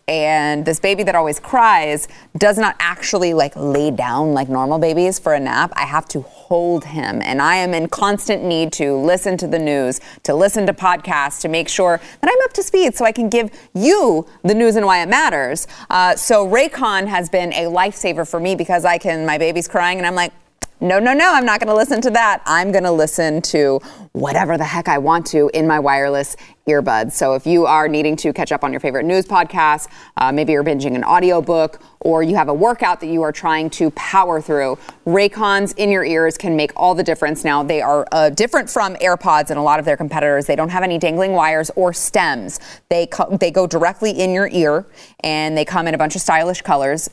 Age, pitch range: 30-49, 155-195 Hz